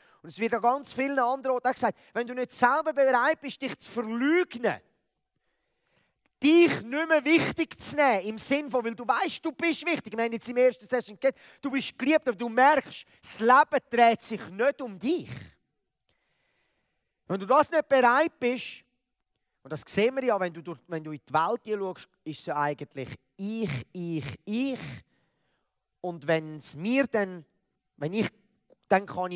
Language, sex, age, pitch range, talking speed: German, male, 30-49, 170-250 Hz, 185 wpm